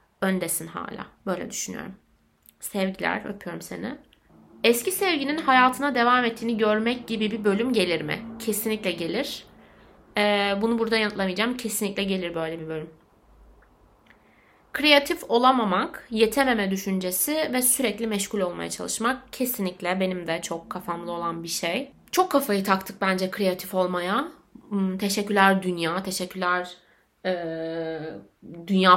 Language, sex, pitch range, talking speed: Turkish, female, 175-225 Hz, 120 wpm